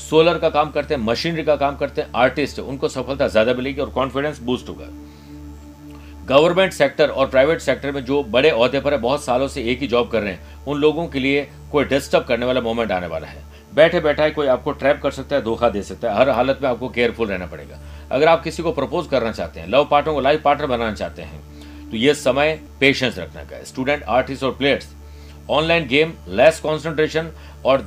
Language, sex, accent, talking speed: Hindi, male, native, 215 wpm